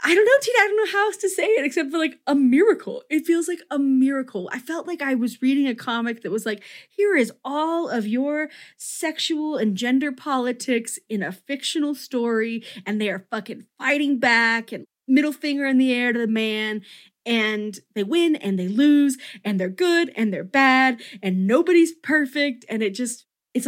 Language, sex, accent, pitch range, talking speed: English, female, American, 200-275 Hz, 205 wpm